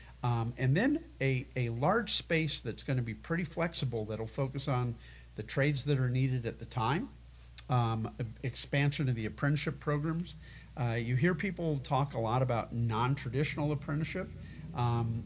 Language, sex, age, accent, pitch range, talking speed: English, male, 50-69, American, 115-140 Hz, 155 wpm